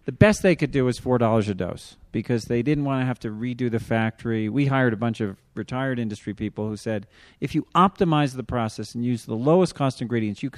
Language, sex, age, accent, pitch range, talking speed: English, male, 40-59, American, 110-145 Hz, 235 wpm